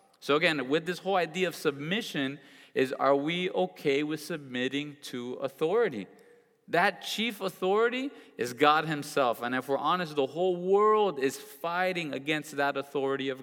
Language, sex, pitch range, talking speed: English, male, 135-190 Hz, 155 wpm